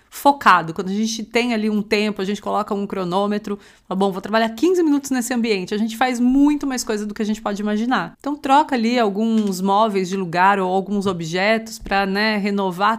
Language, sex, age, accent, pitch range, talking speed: Portuguese, female, 30-49, Brazilian, 195-230 Hz, 215 wpm